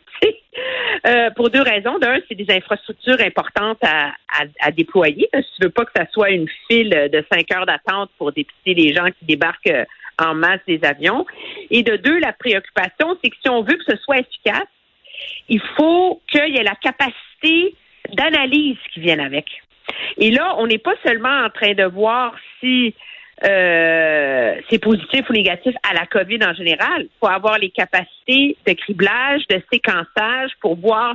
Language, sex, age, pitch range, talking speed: French, female, 50-69, 195-260 Hz, 185 wpm